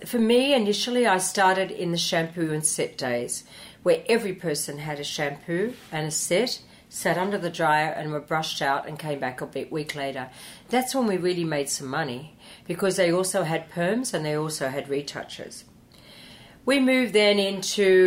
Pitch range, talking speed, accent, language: 155-195 Hz, 185 wpm, Australian, English